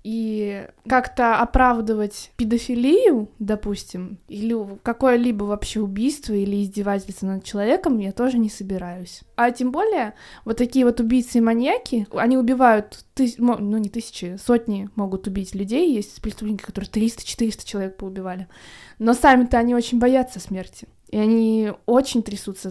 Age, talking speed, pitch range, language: 20-39, 135 wpm, 205-245 Hz, Russian